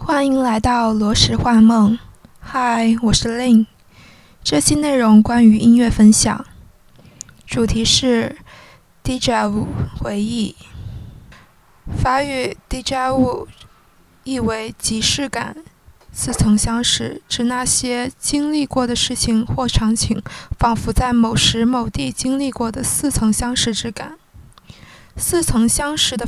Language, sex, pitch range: Chinese, female, 220-255 Hz